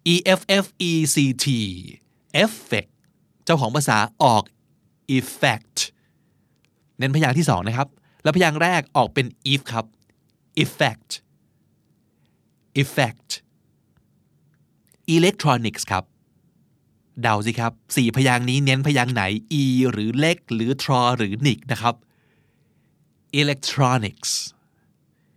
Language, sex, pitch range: Thai, male, 115-150 Hz